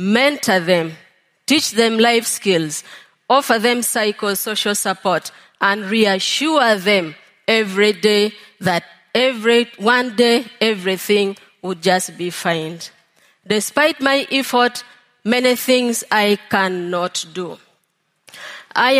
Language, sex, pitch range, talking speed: English, female, 190-240 Hz, 105 wpm